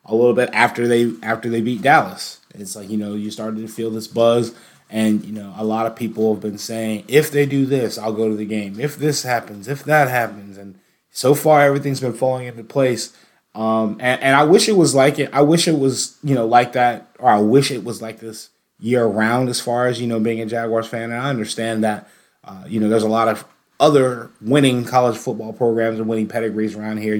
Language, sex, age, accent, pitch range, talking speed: English, male, 20-39, American, 110-130 Hz, 240 wpm